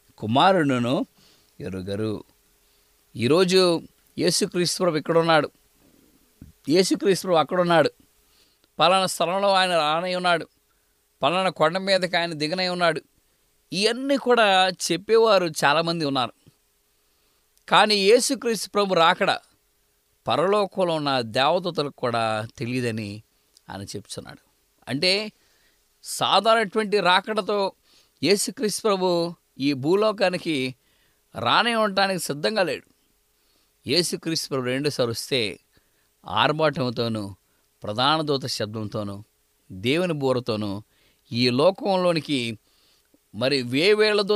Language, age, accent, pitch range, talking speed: English, 20-39, Indian, 120-195 Hz, 60 wpm